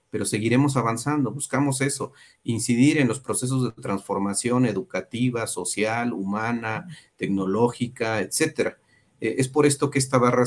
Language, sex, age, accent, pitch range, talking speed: Spanish, male, 40-59, Mexican, 110-130 Hz, 130 wpm